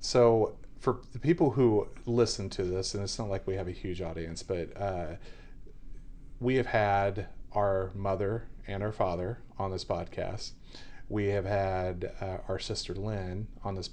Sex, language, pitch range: male, English, 95-115 Hz